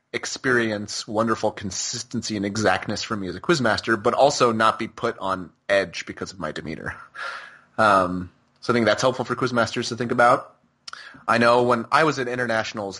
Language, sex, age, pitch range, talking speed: English, male, 30-49, 105-135 Hz, 190 wpm